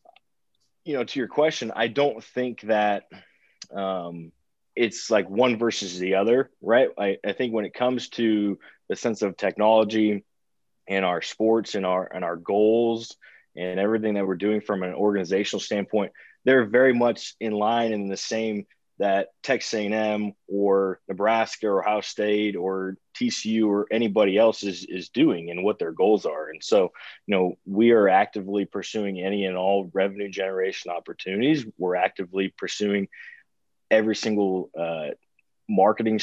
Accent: American